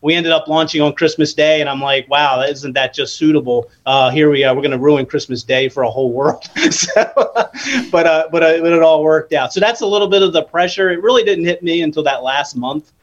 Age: 30-49